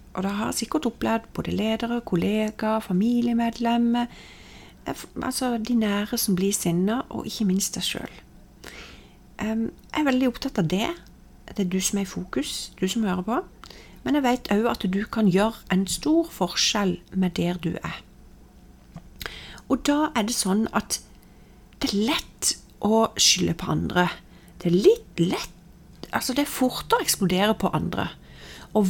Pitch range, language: 185-235 Hz, English